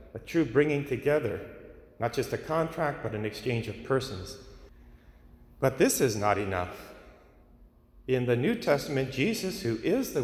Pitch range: 100-135 Hz